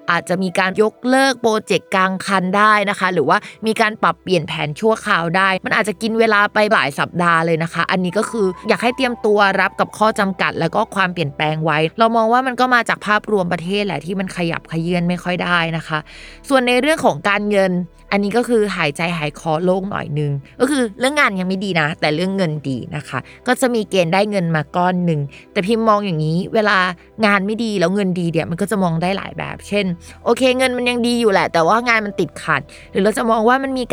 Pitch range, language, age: 165-215 Hz, Thai, 20-39